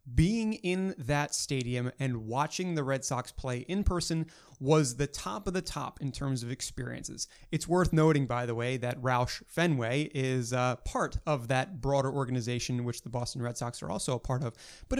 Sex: male